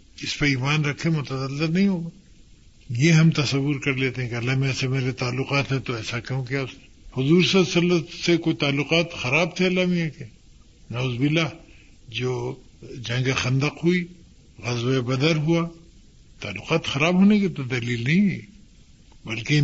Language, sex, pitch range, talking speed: Urdu, male, 125-165 Hz, 160 wpm